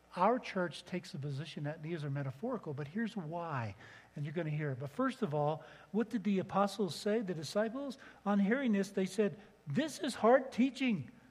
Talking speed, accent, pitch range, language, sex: 200 wpm, American, 130-185 Hz, English, male